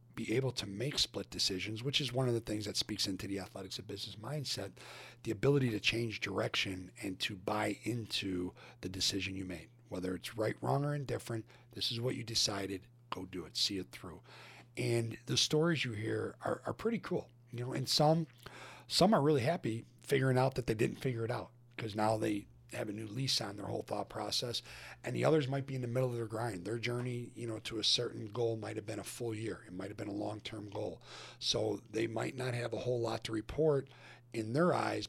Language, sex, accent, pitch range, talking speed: English, male, American, 105-125 Hz, 225 wpm